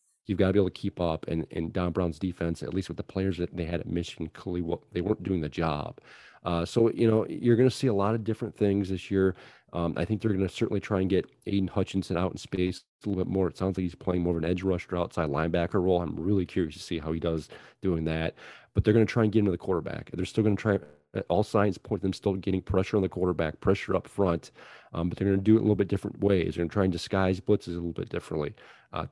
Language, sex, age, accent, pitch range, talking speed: English, male, 40-59, American, 85-105 Hz, 290 wpm